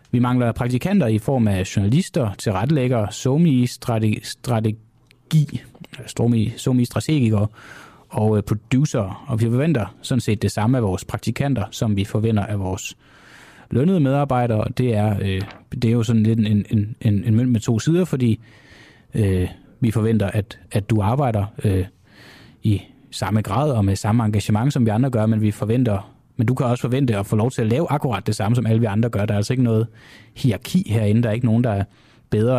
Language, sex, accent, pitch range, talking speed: Danish, male, native, 105-130 Hz, 190 wpm